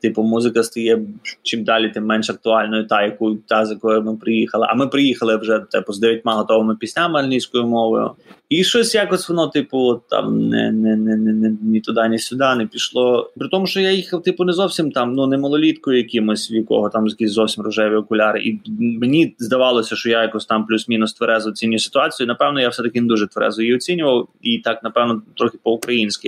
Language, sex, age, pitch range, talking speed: Ukrainian, male, 20-39, 110-160 Hz, 190 wpm